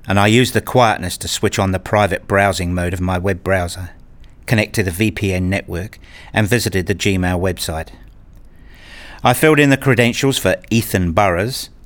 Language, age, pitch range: English, 50-69, 90-120 Hz